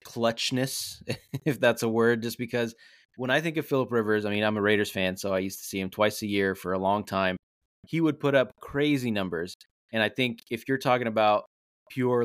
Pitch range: 100-125 Hz